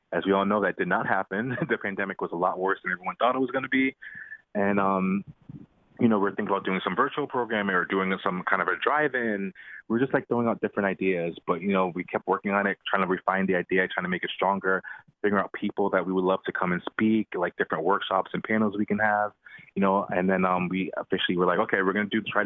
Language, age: English, 20-39